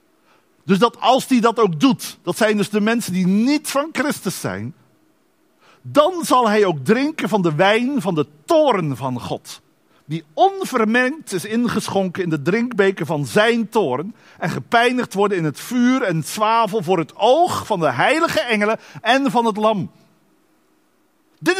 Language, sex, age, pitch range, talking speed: Dutch, male, 50-69, 195-275 Hz, 170 wpm